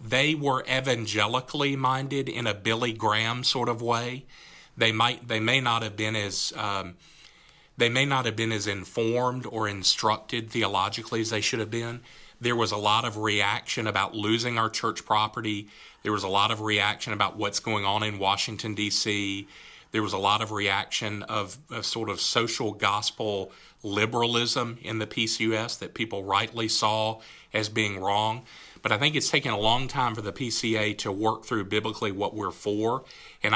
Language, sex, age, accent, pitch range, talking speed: English, male, 40-59, American, 105-125 Hz, 180 wpm